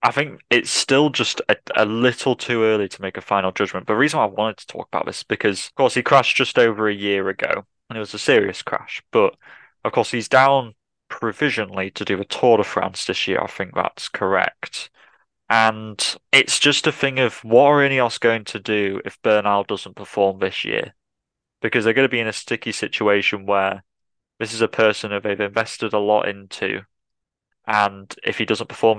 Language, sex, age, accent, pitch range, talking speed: English, male, 20-39, British, 100-115 Hz, 215 wpm